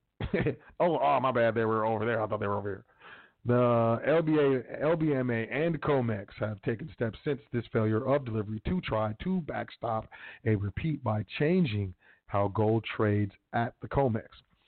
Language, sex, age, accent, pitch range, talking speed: English, male, 40-59, American, 110-130 Hz, 170 wpm